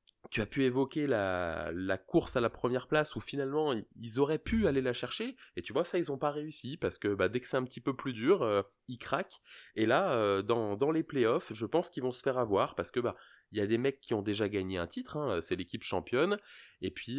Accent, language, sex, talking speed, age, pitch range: French, French, male, 260 wpm, 20-39, 105-135 Hz